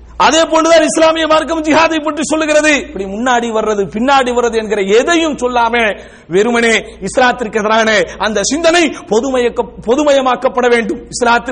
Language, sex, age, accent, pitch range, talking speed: English, male, 50-69, Indian, 235-305 Hz, 150 wpm